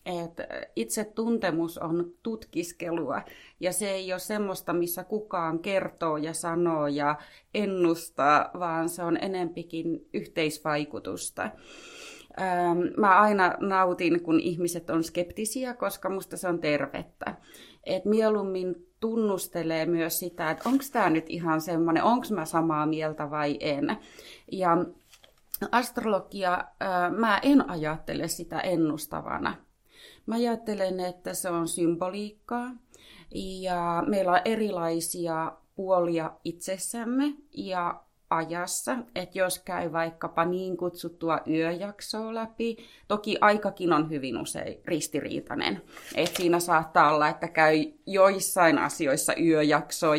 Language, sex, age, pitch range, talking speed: Finnish, female, 30-49, 165-200 Hz, 115 wpm